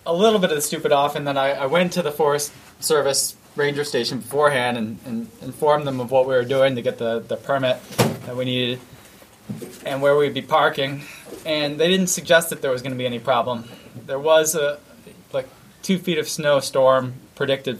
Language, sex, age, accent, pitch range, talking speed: English, male, 20-39, American, 125-150 Hz, 210 wpm